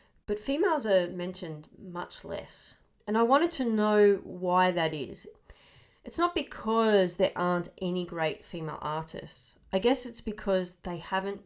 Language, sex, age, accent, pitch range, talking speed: English, female, 30-49, Australian, 160-205 Hz, 150 wpm